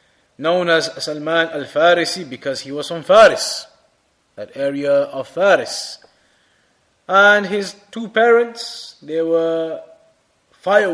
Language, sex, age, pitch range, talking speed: English, male, 30-49, 150-205 Hz, 110 wpm